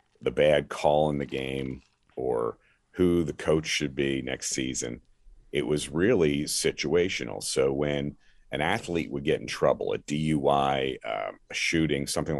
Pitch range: 65-85 Hz